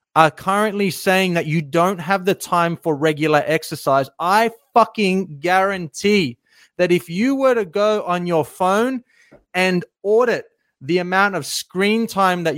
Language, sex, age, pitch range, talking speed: English, male, 30-49, 160-205 Hz, 155 wpm